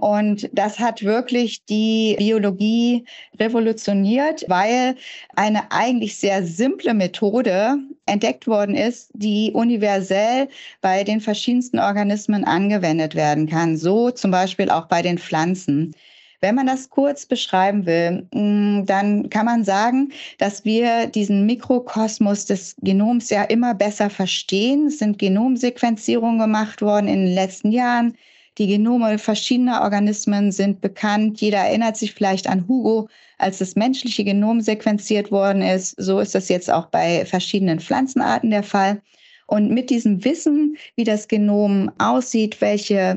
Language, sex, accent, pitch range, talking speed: German, female, German, 200-240 Hz, 140 wpm